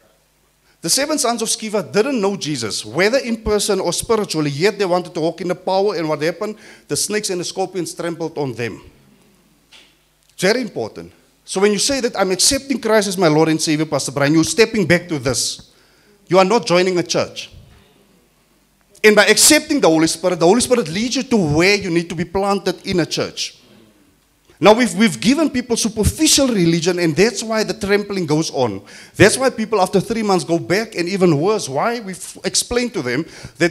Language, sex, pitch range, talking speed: English, male, 165-220 Hz, 200 wpm